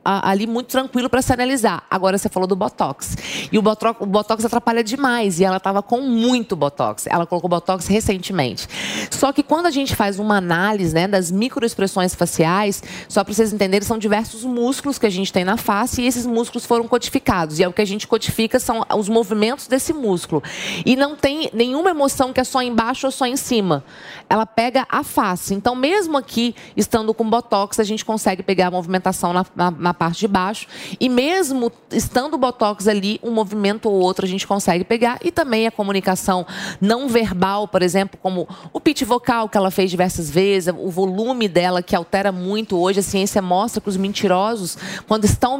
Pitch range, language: 190-240 Hz, English